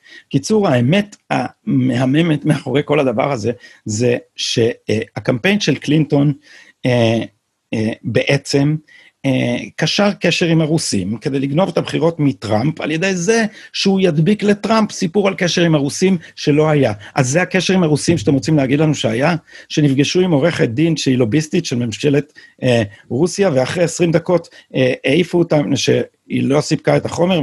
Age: 50-69